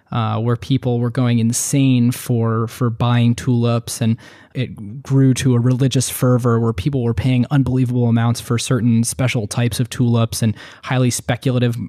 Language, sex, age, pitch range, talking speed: English, male, 20-39, 115-130 Hz, 160 wpm